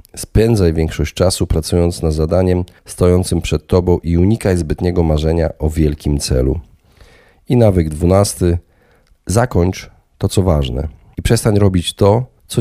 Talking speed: 135 wpm